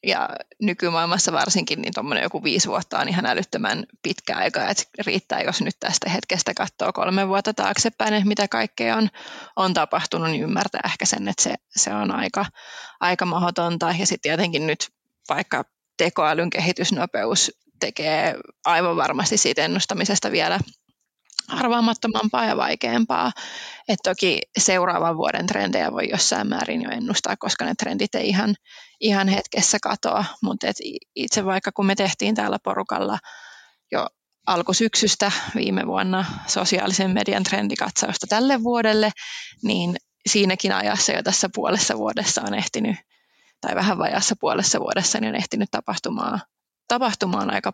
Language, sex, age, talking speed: Finnish, female, 20-39, 140 wpm